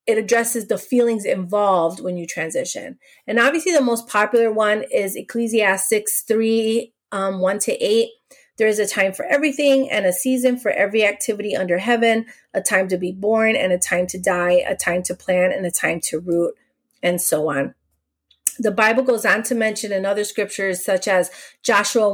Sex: female